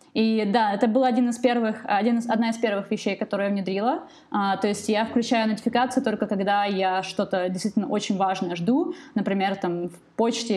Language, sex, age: English, female, 20-39